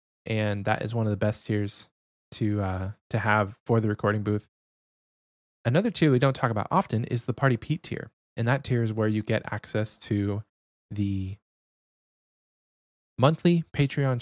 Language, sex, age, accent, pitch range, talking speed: English, male, 20-39, American, 100-130 Hz, 170 wpm